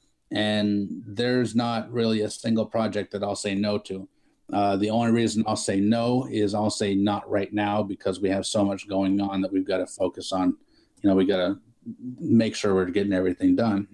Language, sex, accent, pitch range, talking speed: English, male, American, 105-125 Hz, 210 wpm